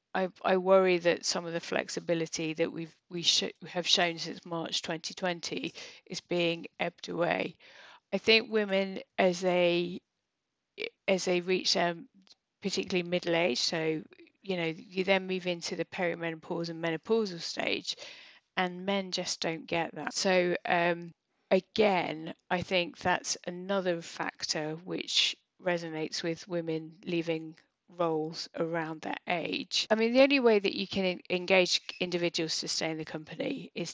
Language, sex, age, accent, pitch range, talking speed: English, female, 30-49, British, 165-190 Hz, 155 wpm